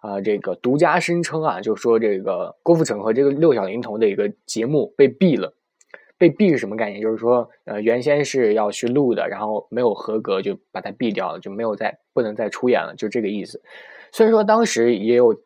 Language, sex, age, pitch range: Chinese, male, 20-39, 115-180 Hz